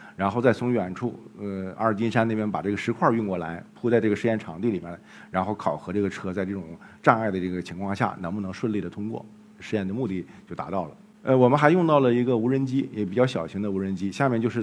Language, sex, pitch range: Chinese, male, 100-130 Hz